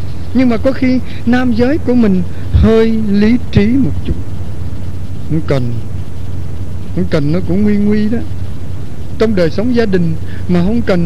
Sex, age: male, 60-79